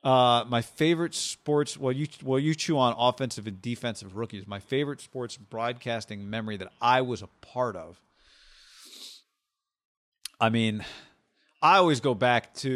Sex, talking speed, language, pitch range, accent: male, 155 wpm, English, 110-140 Hz, American